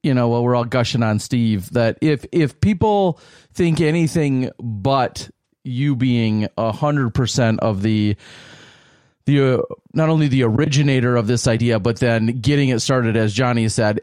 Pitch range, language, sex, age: 115-140 Hz, English, male, 30-49